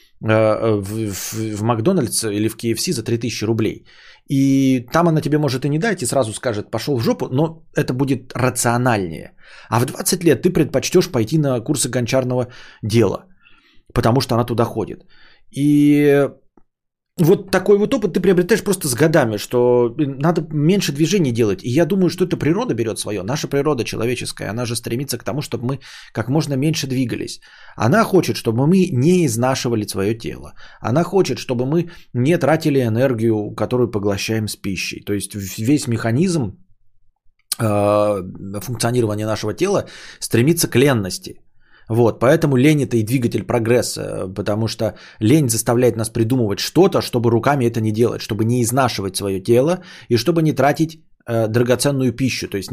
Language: Bulgarian